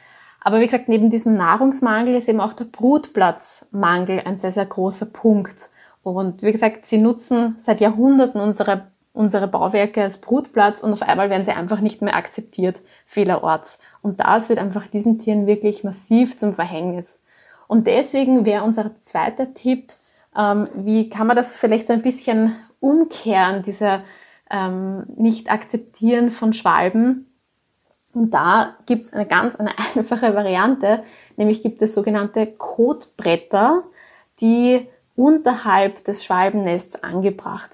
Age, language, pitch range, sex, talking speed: 20-39, German, 200-235 Hz, female, 140 wpm